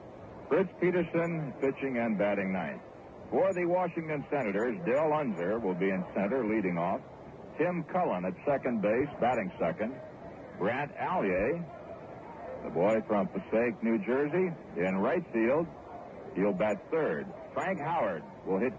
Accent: American